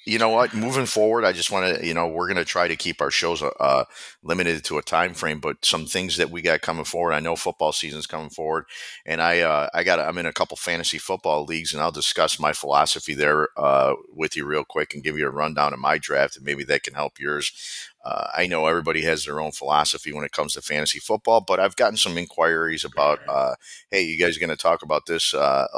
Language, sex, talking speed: English, male, 255 wpm